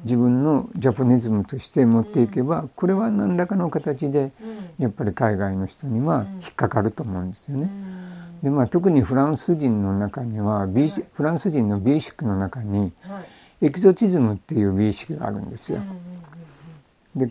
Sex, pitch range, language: male, 110-175 Hz, Japanese